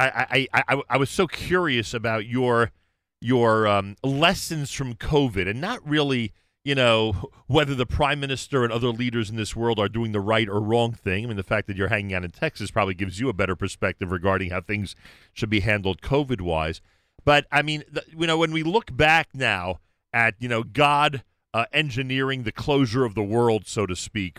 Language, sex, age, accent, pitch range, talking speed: English, male, 40-59, American, 100-145 Hz, 205 wpm